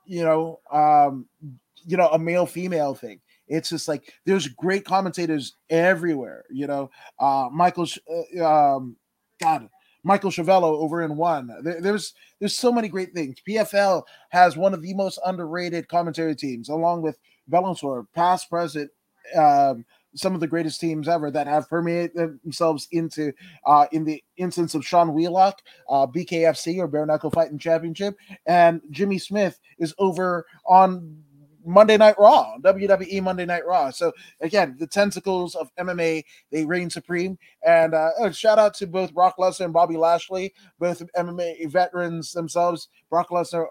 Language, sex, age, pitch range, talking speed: English, male, 20-39, 160-185 Hz, 160 wpm